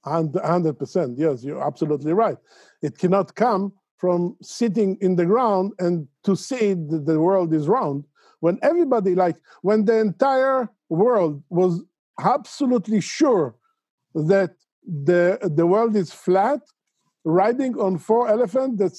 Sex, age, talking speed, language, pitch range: male, 50-69, 135 wpm, English, 175-220 Hz